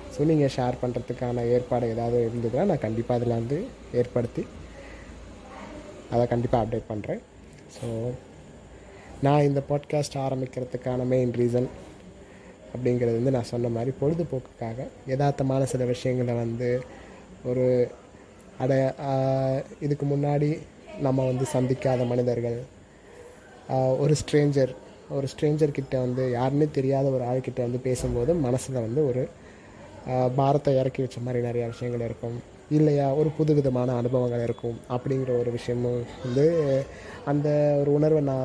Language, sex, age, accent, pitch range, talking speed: Tamil, male, 20-39, native, 120-140 Hz, 115 wpm